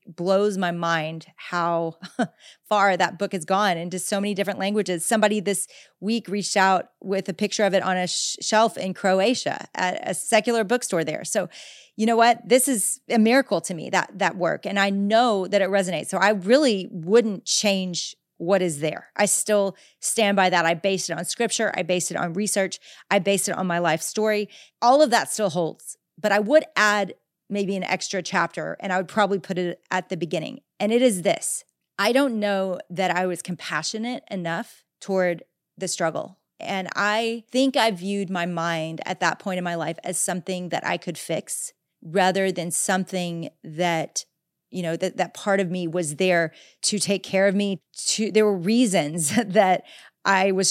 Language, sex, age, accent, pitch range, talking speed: English, female, 30-49, American, 175-205 Hz, 195 wpm